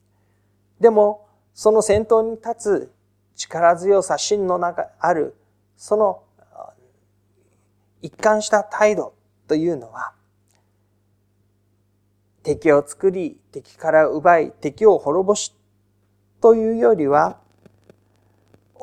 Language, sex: Japanese, male